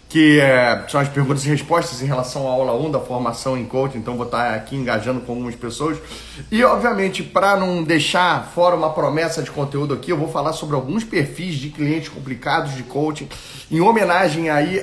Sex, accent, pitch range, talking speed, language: male, Brazilian, 135-175 Hz, 200 wpm, Portuguese